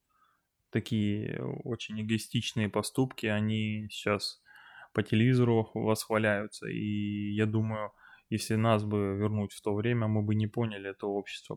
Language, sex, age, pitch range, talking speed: Russian, male, 20-39, 105-120 Hz, 130 wpm